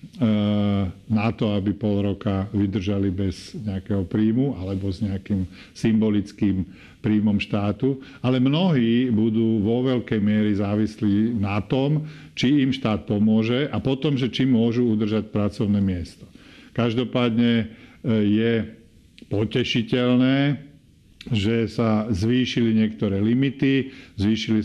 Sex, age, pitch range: male, 50-69, 105-120 Hz